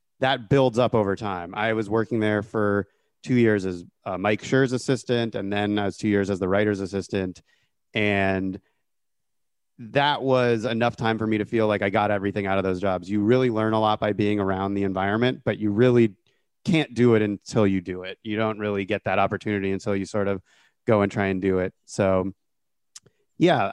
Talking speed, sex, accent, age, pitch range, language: 205 wpm, male, American, 30-49, 100-120 Hz, English